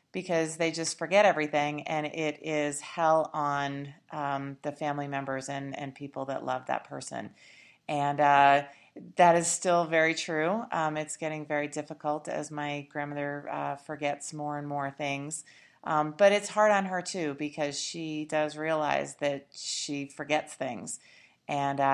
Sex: female